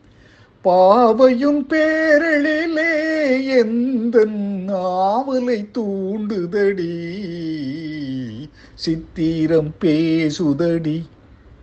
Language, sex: Tamil, male